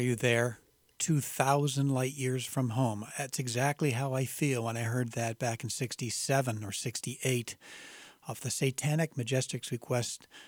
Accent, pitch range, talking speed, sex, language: American, 115-145 Hz, 150 wpm, male, English